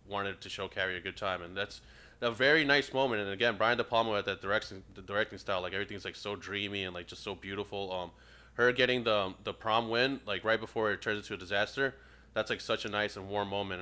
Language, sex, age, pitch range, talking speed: English, male, 20-39, 95-110 Hz, 245 wpm